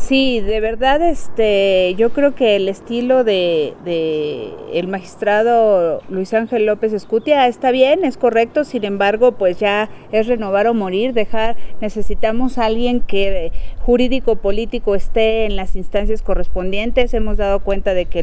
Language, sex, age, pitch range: Spanish, female, 40-59, 190-230 Hz